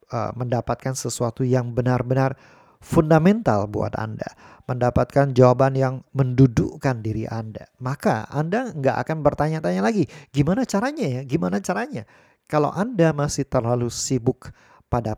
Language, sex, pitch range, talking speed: Indonesian, male, 120-150 Hz, 125 wpm